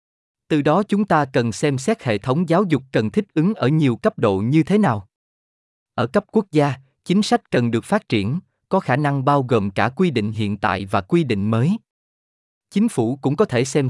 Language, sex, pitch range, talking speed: Vietnamese, male, 110-175 Hz, 220 wpm